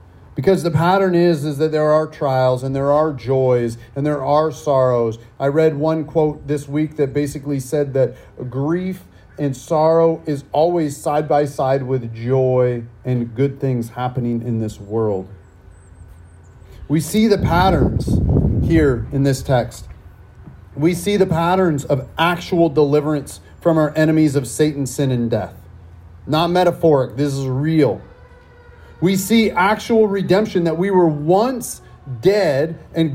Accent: American